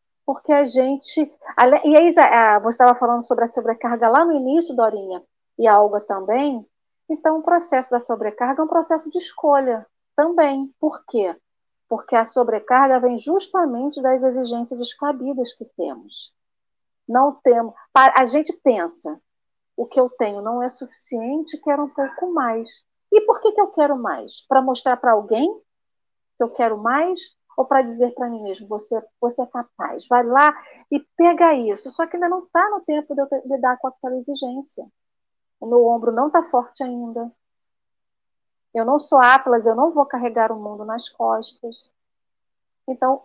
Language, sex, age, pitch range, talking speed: Portuguese, female, 40-59, 230-285 Hz, 170 wpm